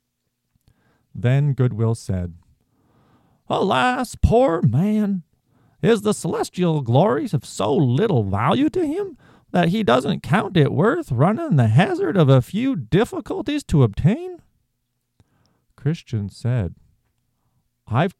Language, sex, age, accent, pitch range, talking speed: English, male, 40-59, American, 120-165 Hz, 110 wpm